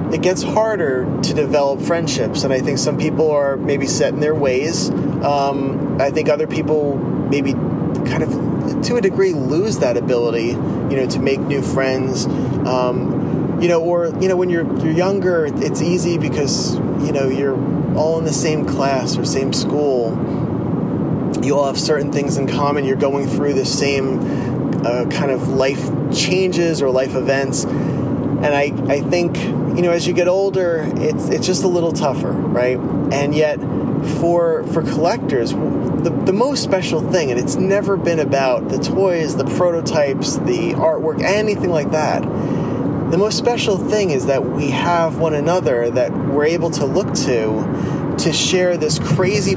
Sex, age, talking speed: male, 30-49, 170 wpm